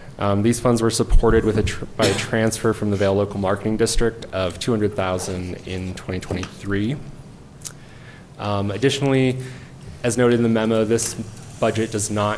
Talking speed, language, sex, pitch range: 175 wpm, English, male, 100-115 Hz